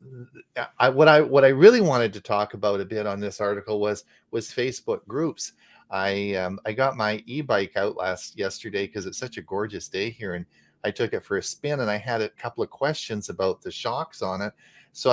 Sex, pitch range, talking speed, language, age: male, 95-120 Hz, 220 wpm, English, 40-59